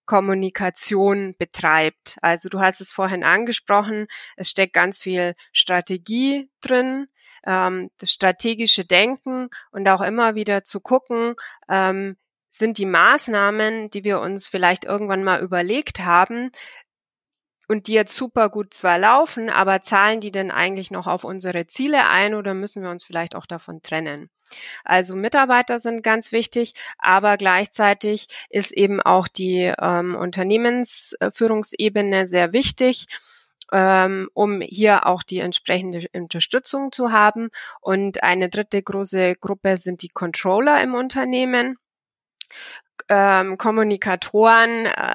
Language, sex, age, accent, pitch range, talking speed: German, female, 20-39, German, 185-225 Hz, 130 wpm